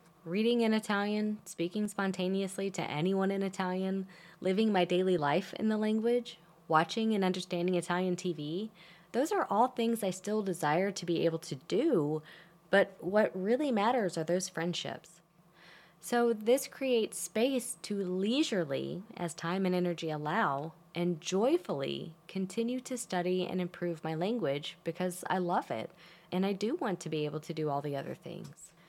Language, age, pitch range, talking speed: English, 20-39, 170-215 Hz, 160 wpm